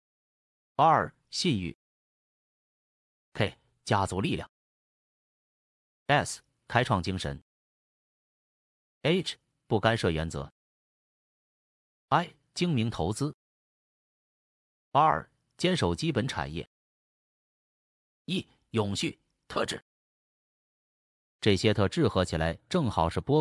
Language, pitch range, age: Chinese, 85-135 Hz, 30-49